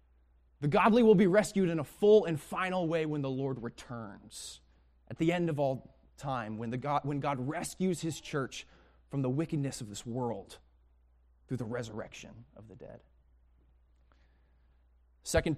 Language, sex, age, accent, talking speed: English, male, 20-39, American, 160 wpm